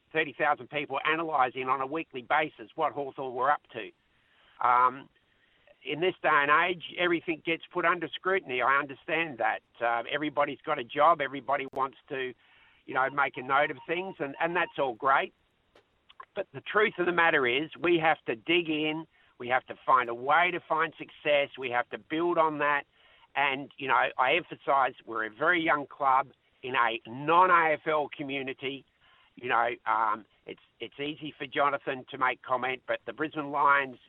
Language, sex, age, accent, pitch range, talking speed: English, male, 50-69, Australian, 125-160 Hz, 180 wpm